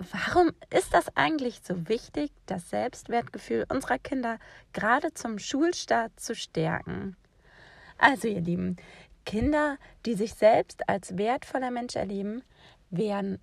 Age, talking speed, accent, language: 20-39, 120 wpm, German, German